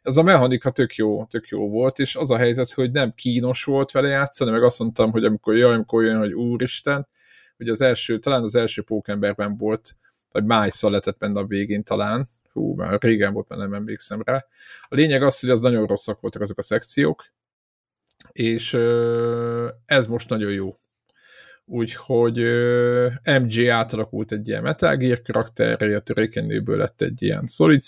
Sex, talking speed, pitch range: male, 170 wpm, 105-125 Hz